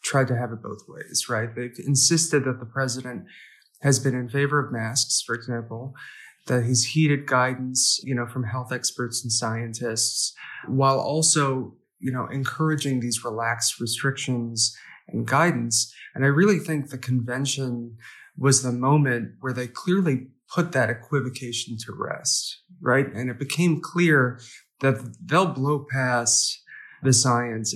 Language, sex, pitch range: English, male, 120-140 Hz